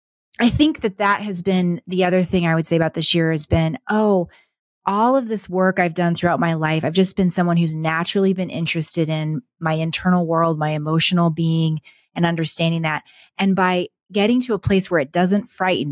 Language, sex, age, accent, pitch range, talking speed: English, female, 30-49, American, 165-200 Hz, 205 wpm